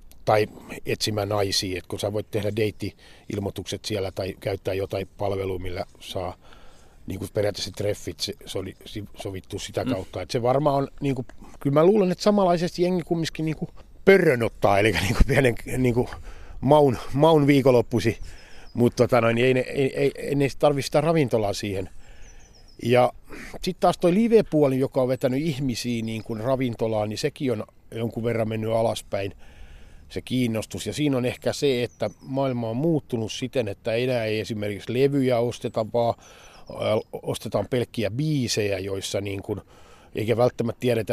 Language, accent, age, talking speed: Finnish, native, 50-69, 160 wpm